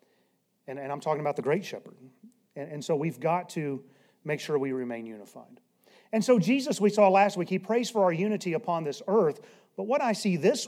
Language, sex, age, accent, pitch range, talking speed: English, male, 40-59, American, 165-225 Hz, 220 wpm